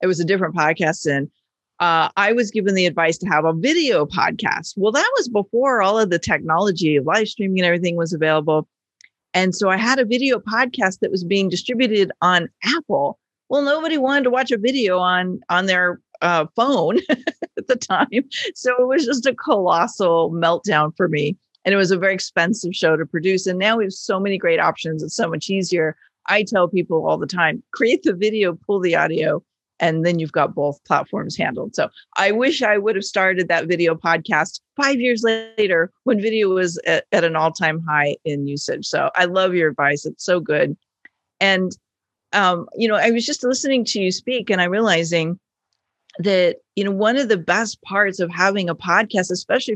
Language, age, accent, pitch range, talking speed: English, 40-59, American, 170-225 Hz, 200 wpm